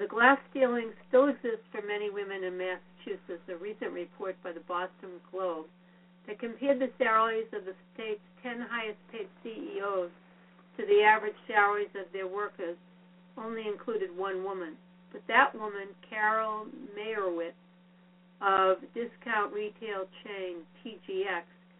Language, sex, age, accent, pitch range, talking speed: English, female, 60-79, American, 180-215 Hz, 130 wpm